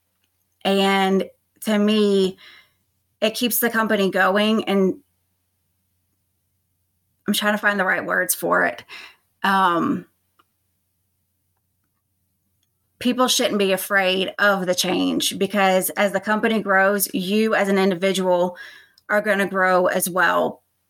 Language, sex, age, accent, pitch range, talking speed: English, female, 20-39, American, 170-205 Hz, 120 wpm